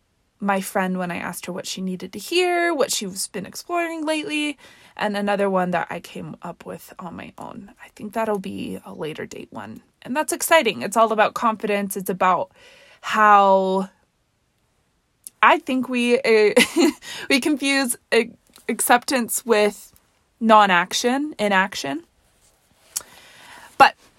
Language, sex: English, female